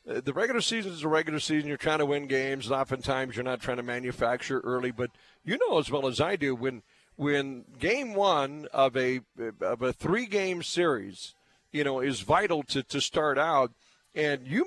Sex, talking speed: male, 195 wpm